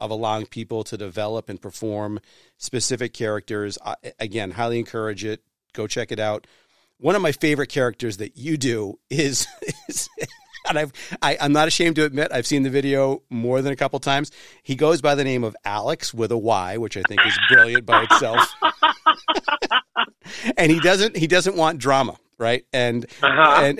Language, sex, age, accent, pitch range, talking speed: English, male, 40-59, American, 115-155 Hz, 180 wpm